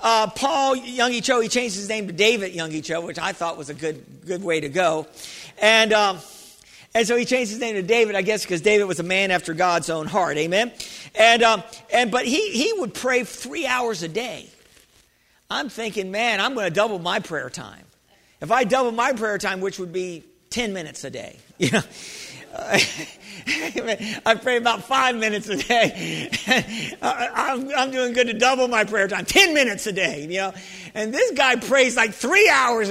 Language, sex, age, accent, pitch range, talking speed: English, male, 50-69, American, 185-245 Hz, 195 wpm